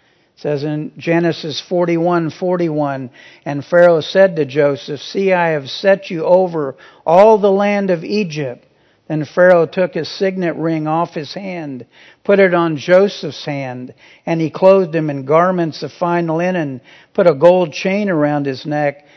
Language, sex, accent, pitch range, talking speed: English, male, American, 150-185 Hz, 165 wpm